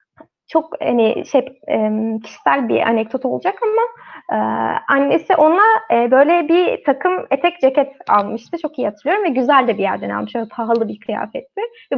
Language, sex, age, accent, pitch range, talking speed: Turkish, female, 20-39, native, 240-320 Hz, 160 wpm